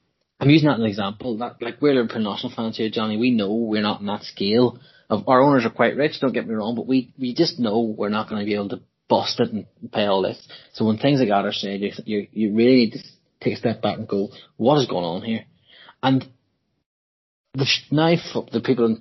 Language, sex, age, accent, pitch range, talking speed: English, male, 30-49, Irish, 105-125 Hz, 245 wpm